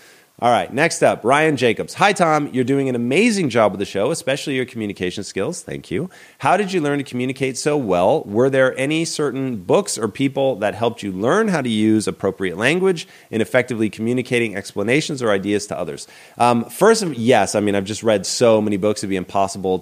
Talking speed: 205 wpm